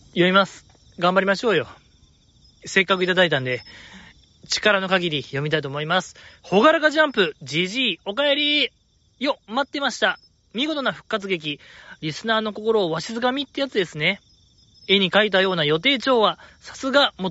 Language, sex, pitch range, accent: Japanese, male, 170-230 Hz, native